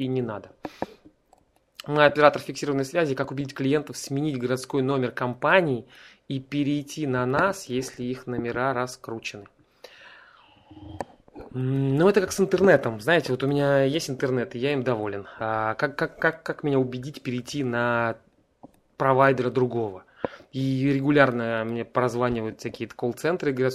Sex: male